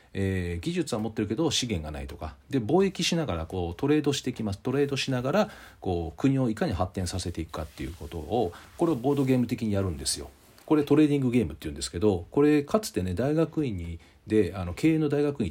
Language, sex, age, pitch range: Japanese, male, 40-59, 95-150 Hz